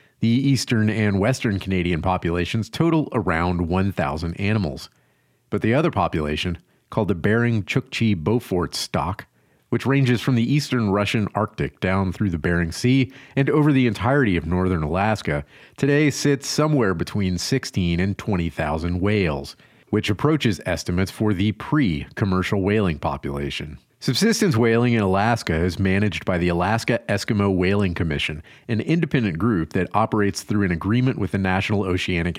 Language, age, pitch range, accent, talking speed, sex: English, 40-59, 90-120 Hz, American, 145 wpm, male